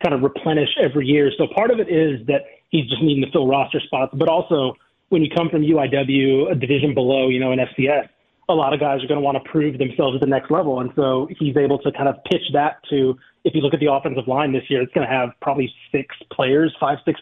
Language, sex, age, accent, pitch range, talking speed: English, male, 30-49, American, 135-160 Hz, 260 wpm